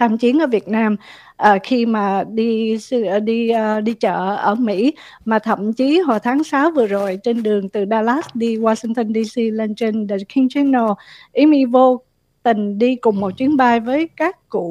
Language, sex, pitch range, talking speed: Vietnamese, female, 215-280 Hz, 190 wpm